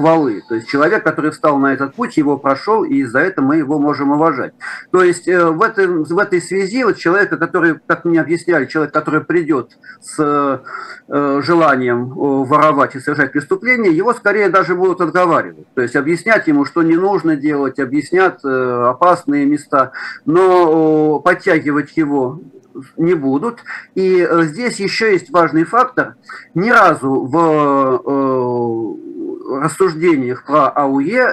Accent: native